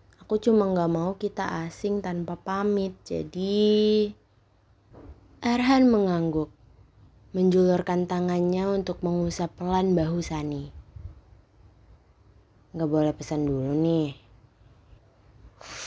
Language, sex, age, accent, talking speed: Indonesian, female, 20-39, native, 85 wpm